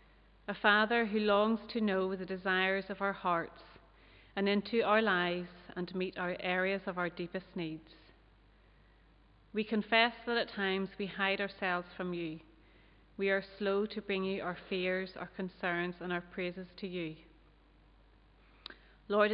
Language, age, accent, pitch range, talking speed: English, 30-49, Irish, 175-200 Hz, 150 wpm